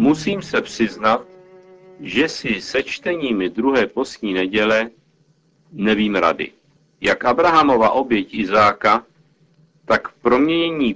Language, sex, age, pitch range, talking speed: Czech, male, 50-69, 110-160 Hz, 105 wpm